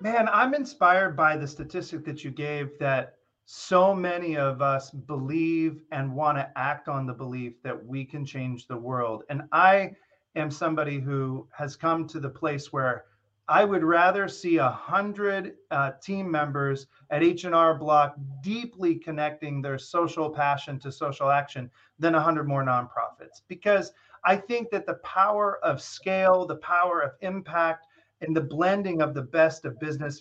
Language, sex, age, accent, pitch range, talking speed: English, male, 30-49, American, 140-185 Hz, 170 wpm